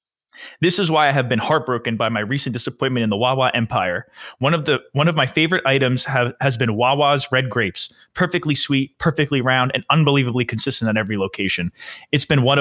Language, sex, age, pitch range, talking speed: English, male, 20-39, 115-140 Hz, 185 wpm